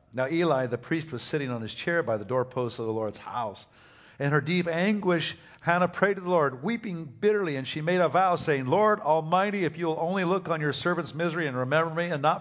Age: 50-69